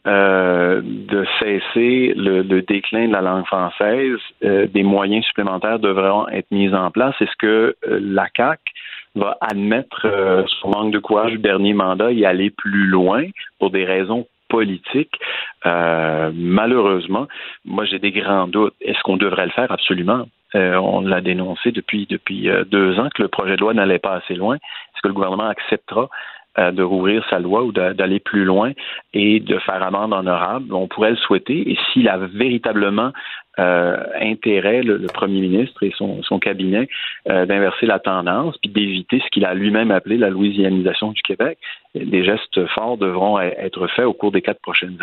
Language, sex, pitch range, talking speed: French, male, 95-105 Hz, 180 wpm